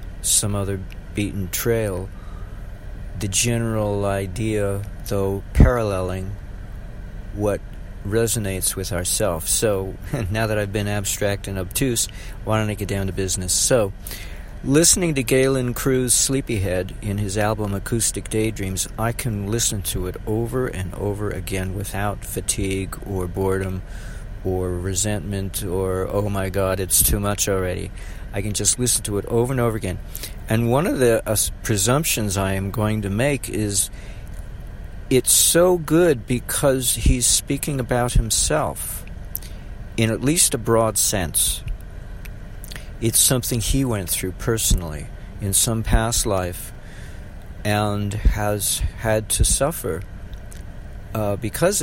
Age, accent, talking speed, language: 50-69, American, 135 wpm, English